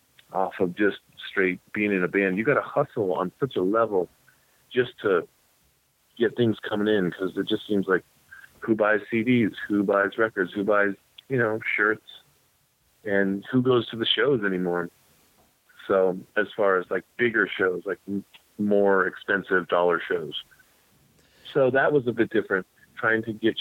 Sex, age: male, 40-59